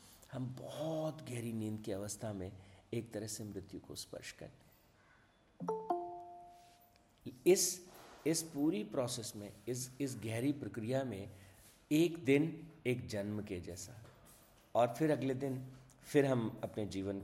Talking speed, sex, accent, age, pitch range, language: 135 wpm, male, native, 50-69, 105-130 Hz, Hindi